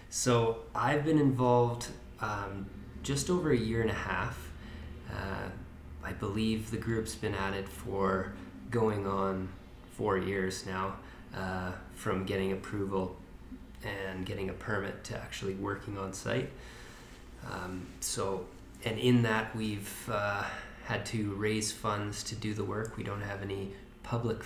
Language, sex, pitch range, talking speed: English, male, 95-115 Hz, 145 wpm